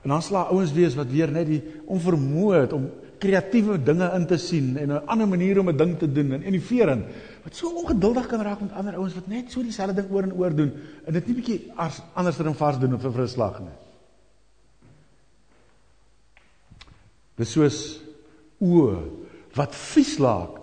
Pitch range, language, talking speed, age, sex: 135-190 Hz, English, 195 wpm, 50-69, male